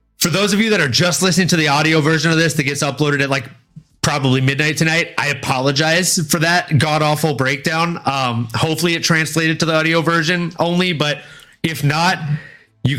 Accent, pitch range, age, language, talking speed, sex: American, 130-170 Hz, 30-49, English, 195 wpm, male